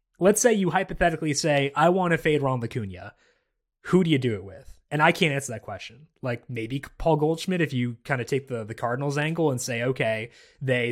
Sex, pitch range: male, 130-175 Hz